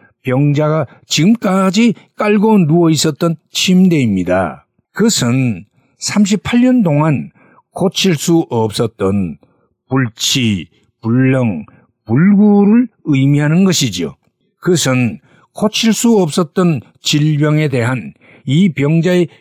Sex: male